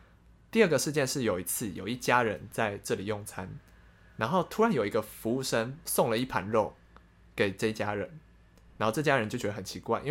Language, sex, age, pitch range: Chinese, male, 20-39, 105-130 Hz